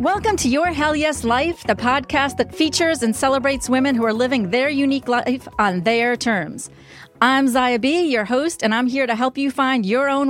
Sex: female